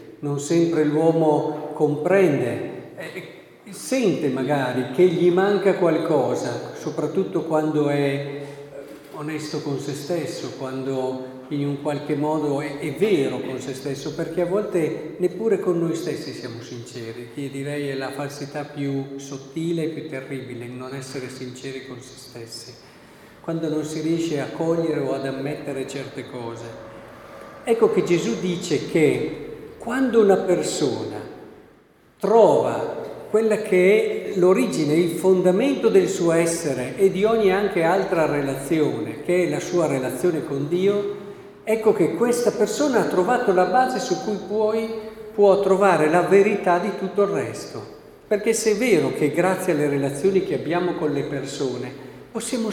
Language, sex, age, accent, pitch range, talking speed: Italian, male, 50-69, native, 140-190 Hz, 145 wpm